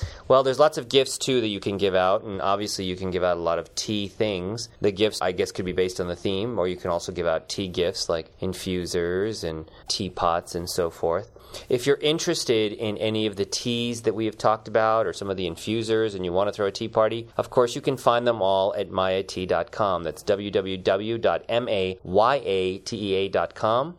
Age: 30-49